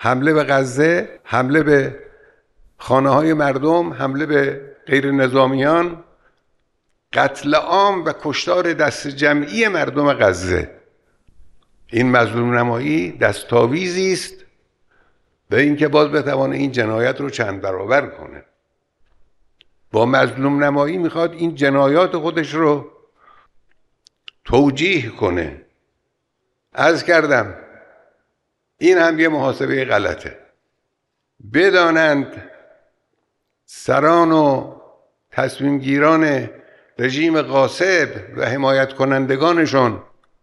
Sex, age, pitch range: male, 60-79, 135-170 Hz